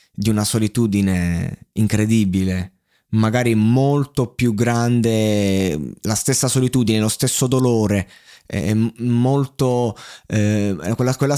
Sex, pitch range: male, 100-125 Hz